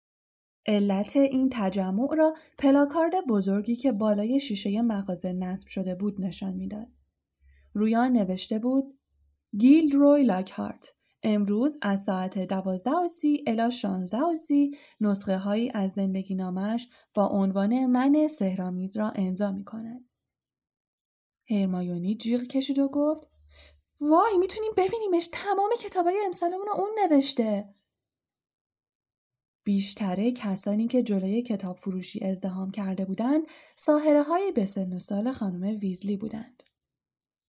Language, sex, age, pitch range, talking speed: Persian, female, 10-29, 195-295 Hz, 110 wpm